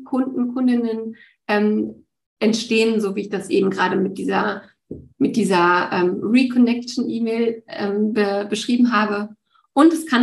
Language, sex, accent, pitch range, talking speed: German, female, German, 195-225 Hz, 135 wpm